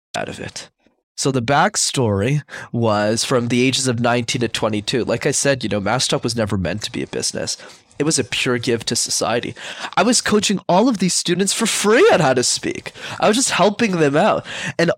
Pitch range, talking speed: 125-200 Hz, 215 wpm